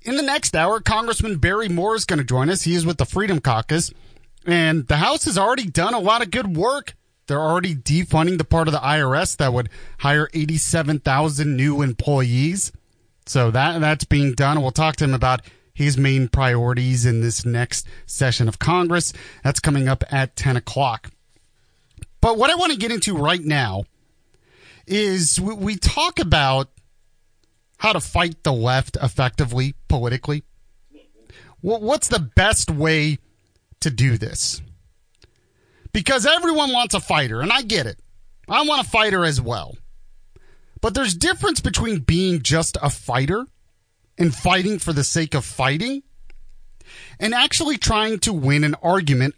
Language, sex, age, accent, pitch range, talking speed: English, male, 30-49, American, 125-175 Hz, 160 wpm